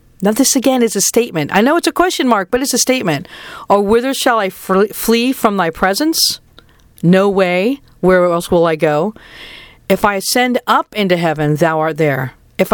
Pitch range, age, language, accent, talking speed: 155-205 Hz, 50-69, English, American, 195 wpm